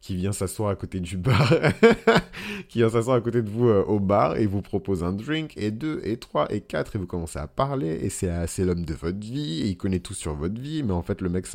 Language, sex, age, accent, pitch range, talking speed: French, male, 30-49, French, 85-100 Hz, 280 wpm